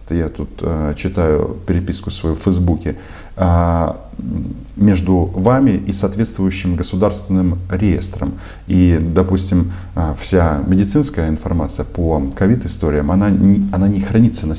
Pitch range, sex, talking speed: 80-95 Hz, male, 110 wpm